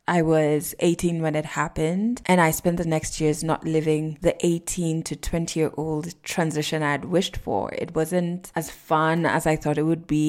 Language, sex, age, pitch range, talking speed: English, female, 20-39, 150-180 Hz, 205 wpm